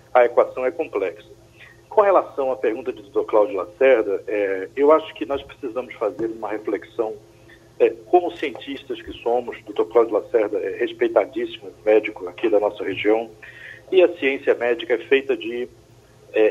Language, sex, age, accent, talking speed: Portuguese, male, 50-69, Brazilian, 160 wpm